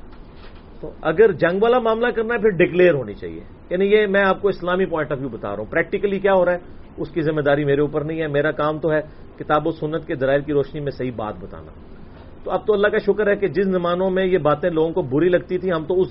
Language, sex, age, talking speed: English, male, 40-59, 270 wpm